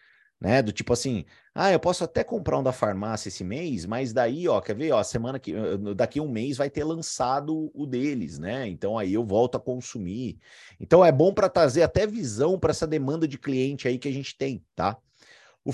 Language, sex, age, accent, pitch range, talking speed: Portuguese, male, 30-49, Brazilian, 115-150 Hz, 215 wpm